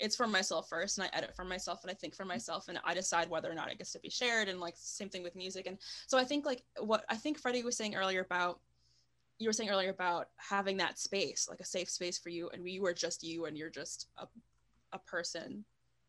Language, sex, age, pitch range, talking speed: English, female, 20-39, 175-215 Hz, 255 wpm